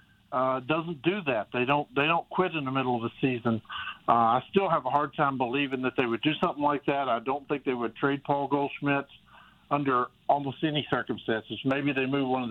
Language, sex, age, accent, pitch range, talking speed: English, male, 50-69, American, 130-155 Hz, 225 wpm